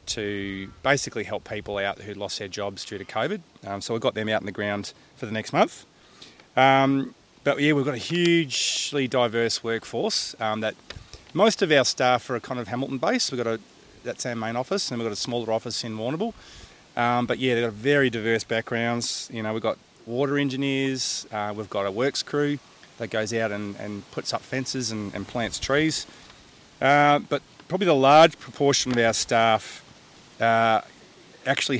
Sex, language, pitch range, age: male, English, 105-125 Hz, 30-49